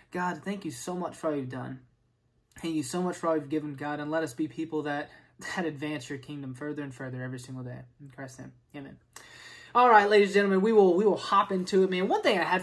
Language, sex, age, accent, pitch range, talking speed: English, male, 20-39, American, 150-200 Hz, 260 wpm